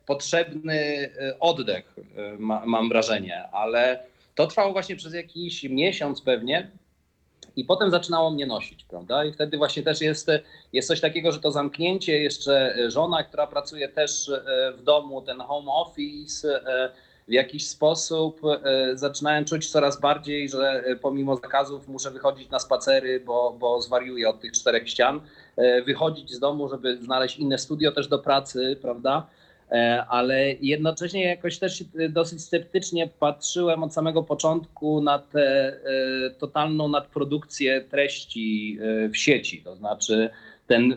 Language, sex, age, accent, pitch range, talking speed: Polish, male, 30-49, native, 130-160 Hz, 135 wpm